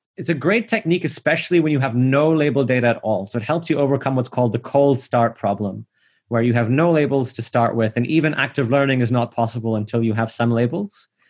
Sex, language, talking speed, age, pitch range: male, English, 235 wpm, 20-39, 120-155 Hz